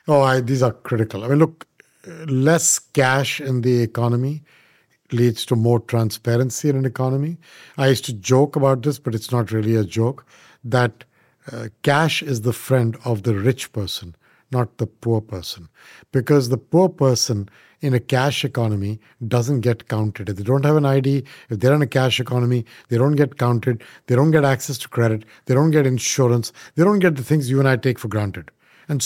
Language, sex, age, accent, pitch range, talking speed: English, male, 50-69, Indian, 115-145 Hz, 195 wpm